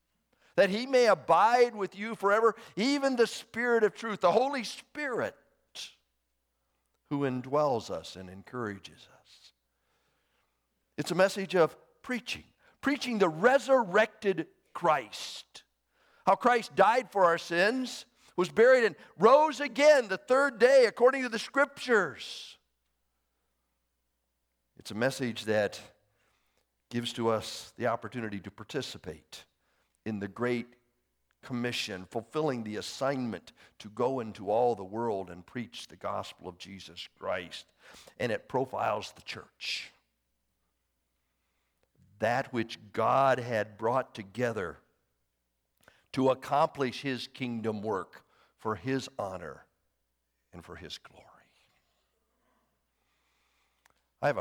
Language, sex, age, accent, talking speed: English, male, 50-69, American, 115 wpm